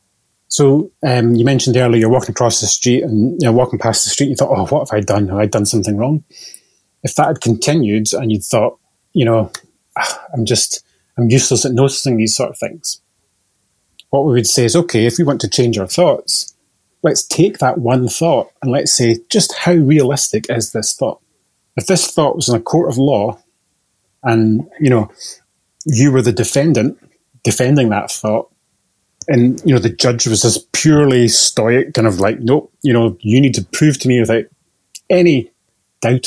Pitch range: 105-130 Hz